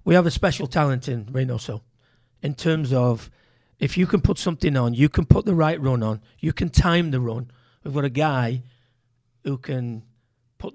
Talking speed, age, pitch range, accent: 195 wpm, 40-59, 125-155 Hz, British